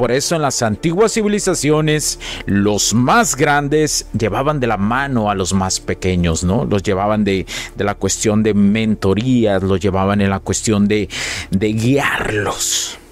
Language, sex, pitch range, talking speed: Spanish, male, 100-130 Hz, 155 wpm